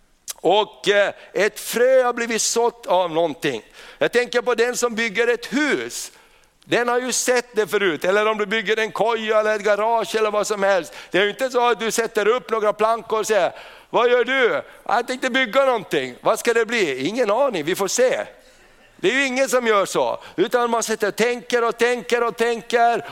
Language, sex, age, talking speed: Swedish, male, 60-79, 210 wpm